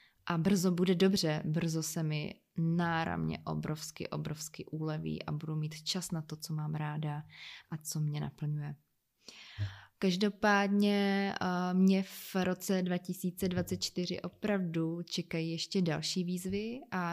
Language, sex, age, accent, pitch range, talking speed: Czech, female, 20-39, native, 160-180 Hz, 125 wpm